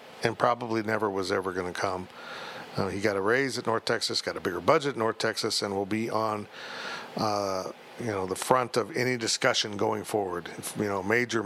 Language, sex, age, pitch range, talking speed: English, male, 50-69, 105-130 Hz, 215 wpm